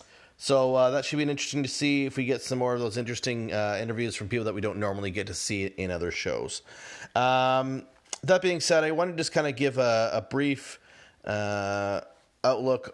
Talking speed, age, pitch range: 220 wpm, 30-49, 105-130 Hz